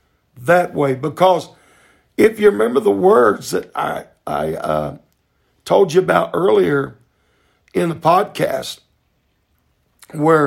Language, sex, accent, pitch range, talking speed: English, male, American, 140-200 Hz, 115 wpm